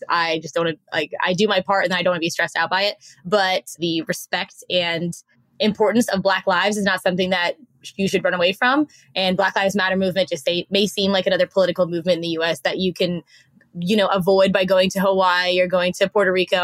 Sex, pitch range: female, 180-220 Hz